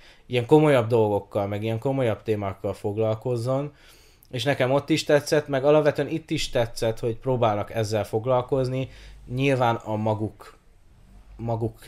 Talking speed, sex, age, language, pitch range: 130 wpm, male, 20-39, Hungarian, 110-135 Hz